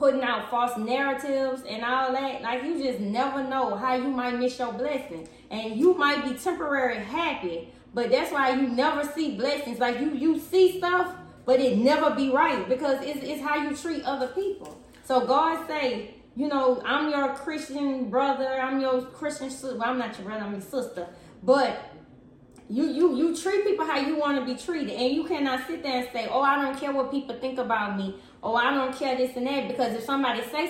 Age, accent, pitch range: 20-39, American, 245-285 Hz